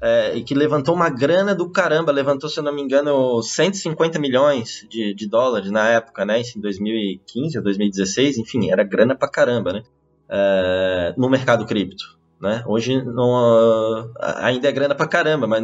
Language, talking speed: Portuguese, 155 wpm